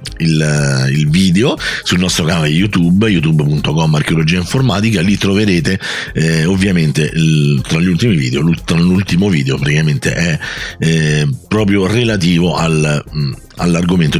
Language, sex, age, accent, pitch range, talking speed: Italian, male, 50-69, native, 80-110 Hz, 125 wpm